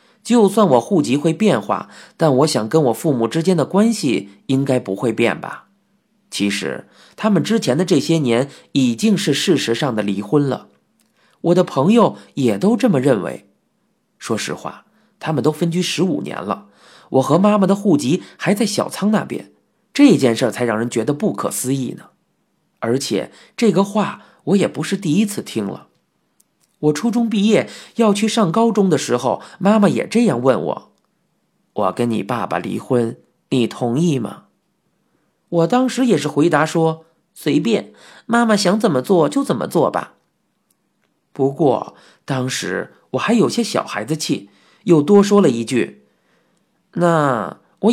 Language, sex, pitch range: Chinese, male, 135-215 Hz